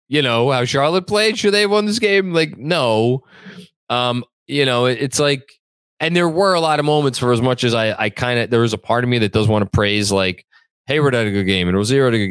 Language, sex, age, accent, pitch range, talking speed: English, male, 20-39, American, 100-135 Hz, 275 wpm